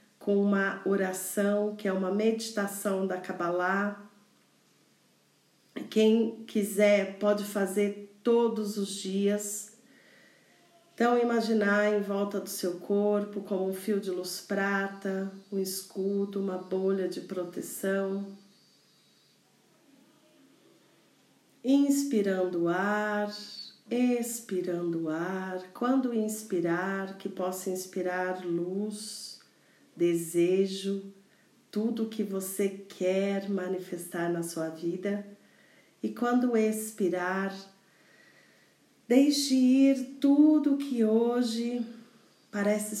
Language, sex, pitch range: Portuguese, female, 190-215 Hz